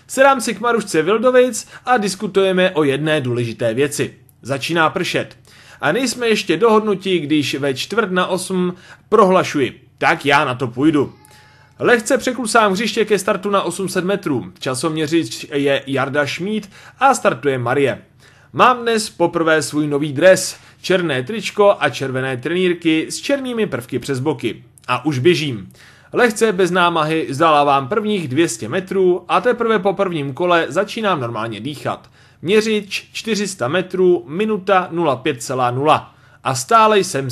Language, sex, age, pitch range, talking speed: Czech, male, 30-49, 145-210 Hz, 135 wpm